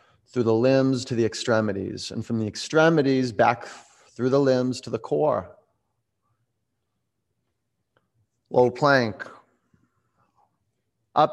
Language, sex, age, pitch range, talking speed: English, male, 30-49, 110-125 Hz, 105 wpm